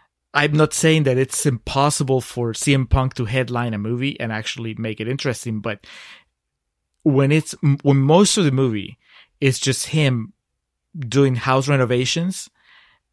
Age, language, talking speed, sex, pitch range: 30-49, English, 150 wpm, male, 115-145 Hz